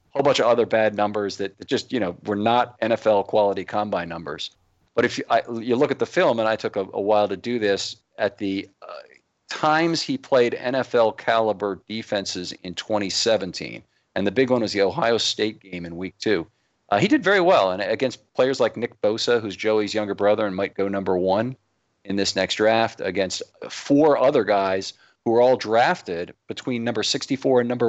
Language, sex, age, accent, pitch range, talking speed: English, male, 40-59, American, 100-120 Hz, 200 wpm